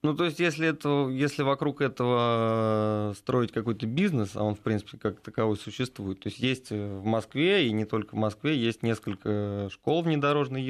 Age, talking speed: 20-39, 180 wpm